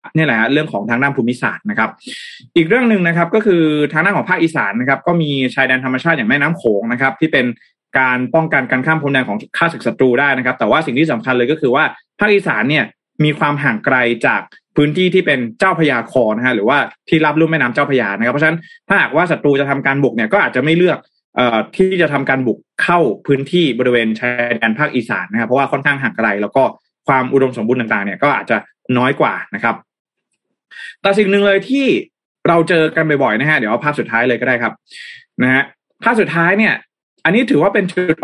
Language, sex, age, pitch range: Thai, male, 20-39, 130-170 Hz